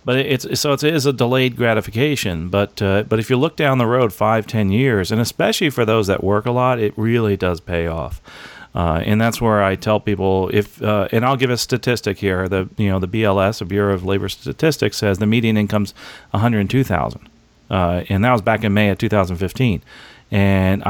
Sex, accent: male, American